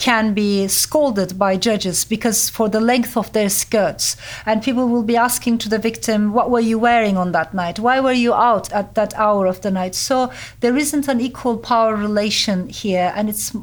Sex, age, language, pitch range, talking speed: female, 40-59, English, 200-235 Hz, 205 wpm